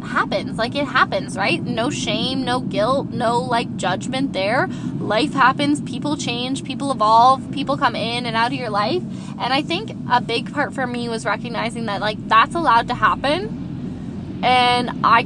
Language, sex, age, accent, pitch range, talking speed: English, female, 10-29, American, 235-280 Hz, 175 wpm